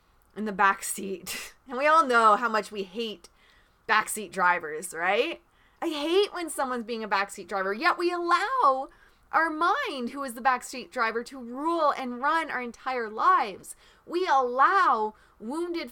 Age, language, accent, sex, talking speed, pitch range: 30-49, English, American, female, 160 wpm, 215-305 Hz